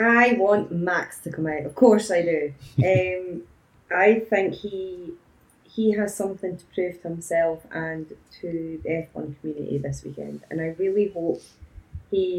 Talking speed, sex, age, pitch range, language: 160 wpm, female, 20-39, 160-205 Hz, English